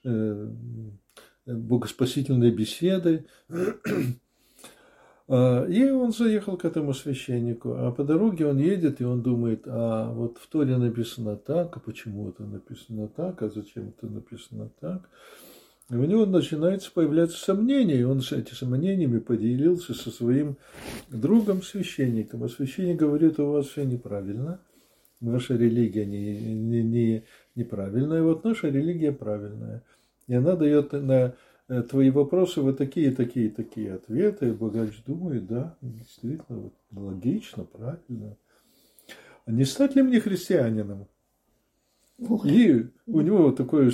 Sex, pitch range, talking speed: male, 115-160 Hz, 125 wpm